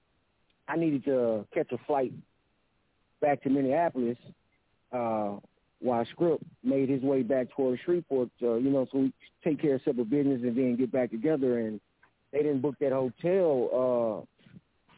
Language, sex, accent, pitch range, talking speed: English, male, American, 120-145 Hz, 160 wpm